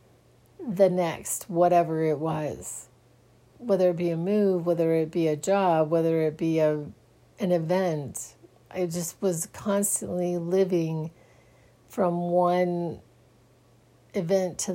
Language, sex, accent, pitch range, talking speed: English, female, American, 155-200 Hz, 120 wpm